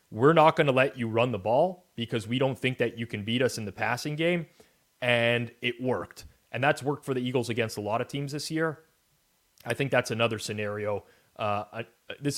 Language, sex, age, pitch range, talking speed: English, male, 30-49, 100-120 Hz, 220 wpm